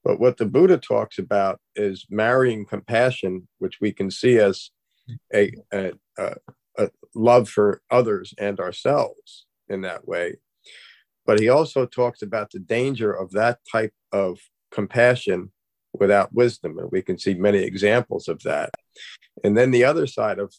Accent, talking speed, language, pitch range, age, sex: American, 150 wpm, English, 100-125 Hz, 40-59, male